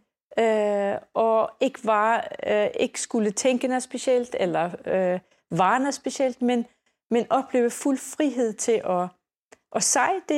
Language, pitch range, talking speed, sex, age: Danish, 215-255 Hz, 140 wpm, female, 40-59